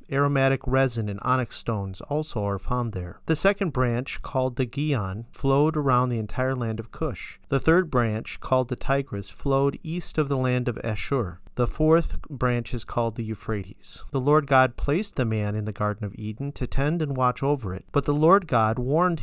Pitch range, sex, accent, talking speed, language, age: 110-150 Hz, male, American, 200 wpm, English, 40-59